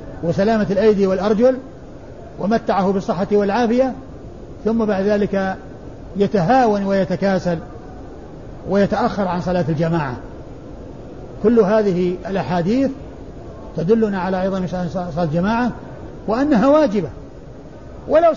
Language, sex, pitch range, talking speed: Arabic, male, 185-230 Hz, 85 wpm